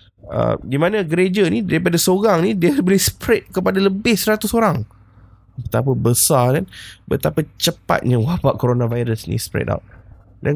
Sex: male